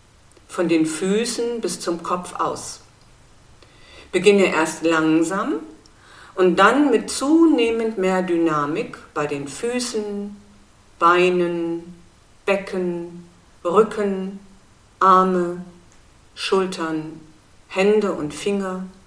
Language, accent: German, German